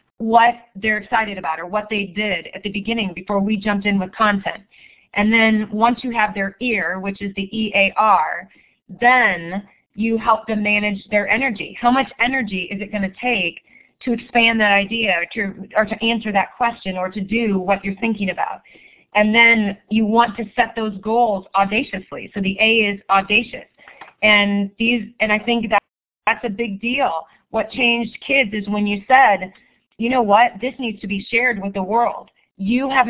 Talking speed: 190 wpm